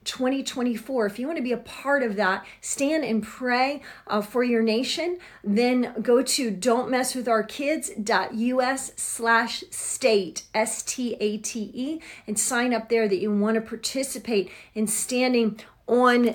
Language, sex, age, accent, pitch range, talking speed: English, female, 40-59, American, 205-245 Hz, 155 wpm